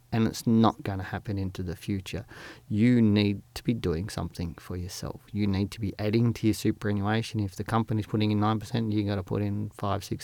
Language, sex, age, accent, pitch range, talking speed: English, male, 30-49, Australian, 100-115 Hz, 225 wpm